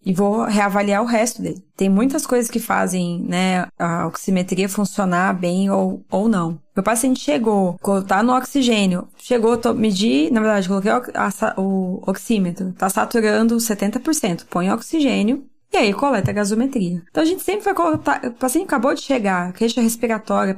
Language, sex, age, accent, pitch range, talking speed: Portuguese, female, 20-39, Brazilian, 190-240 Hz, 160 wpm